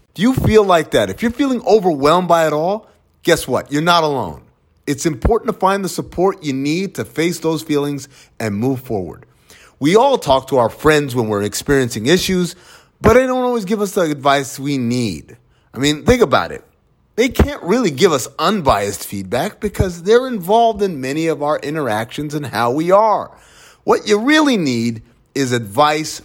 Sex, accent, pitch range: male, American, 125-195 Hz